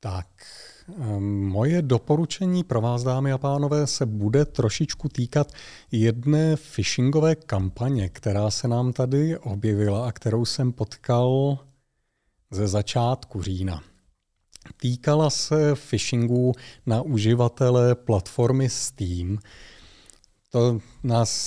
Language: Czech